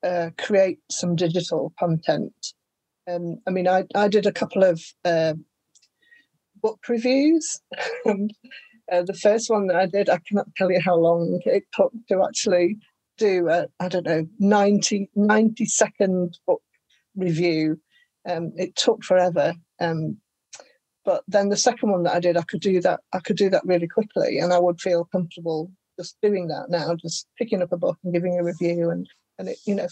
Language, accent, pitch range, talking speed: English, British, 175-210 Hz, 185 wpm